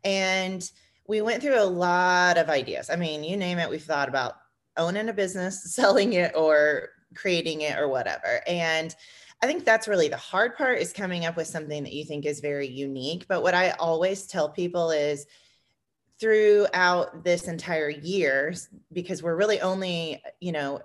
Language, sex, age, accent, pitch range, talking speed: English, female, 30-49, American, 155-195 Hz, 180 wpm